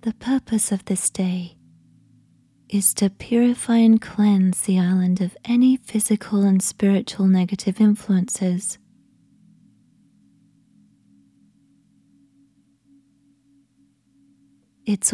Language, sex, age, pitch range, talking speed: English, female, 20-39, 120-205 Hz, 80 wpm